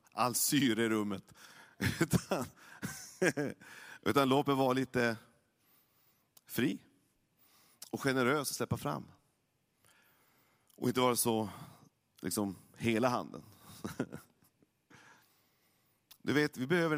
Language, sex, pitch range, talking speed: Swedish, male, 120-145 Hz, 90 wpm